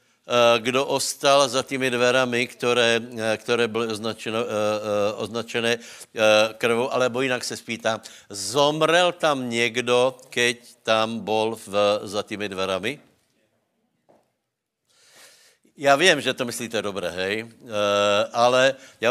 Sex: male